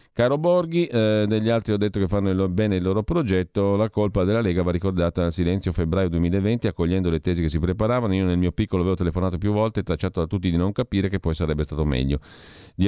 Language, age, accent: Italian, 40-59, native